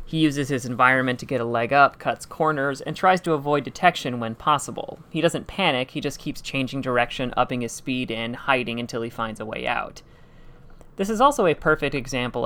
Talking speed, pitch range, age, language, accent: 205 wpm, 125-155 Hz, 30-49, English, American